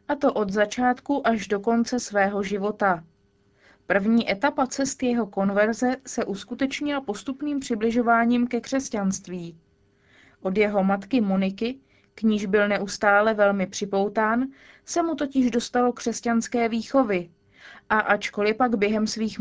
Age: 20-39